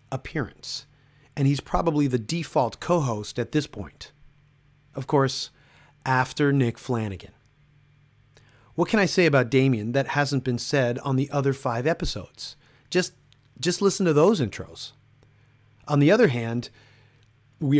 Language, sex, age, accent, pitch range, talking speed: English, male, 30-49, American, 120-150 Hz, 140 wpm